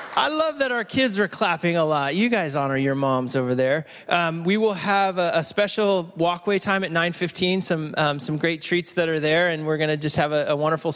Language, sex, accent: English, male, American